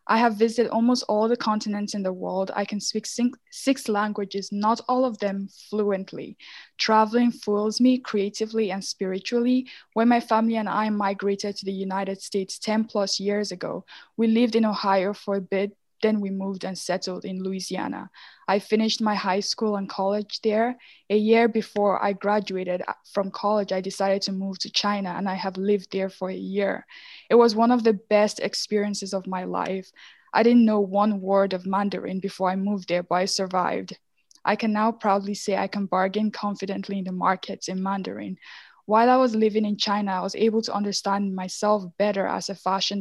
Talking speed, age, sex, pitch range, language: 190 wpm, 10-29, female, 195-215 Hz, English